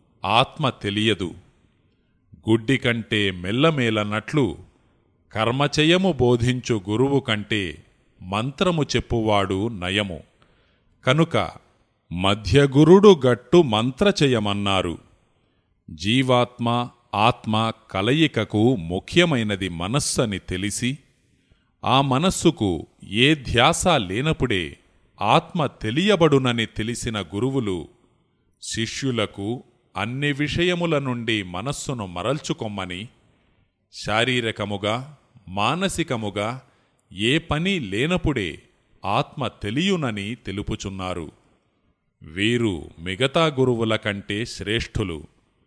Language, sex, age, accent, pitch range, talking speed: Telugu, male, 30-49, native, 100-140 Hz, 65 wpm